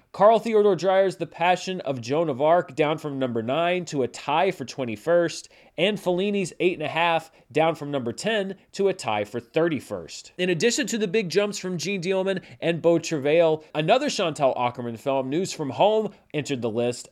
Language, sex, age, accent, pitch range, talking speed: English, male, 30-49, American, 135-185 Hz, 195 wpm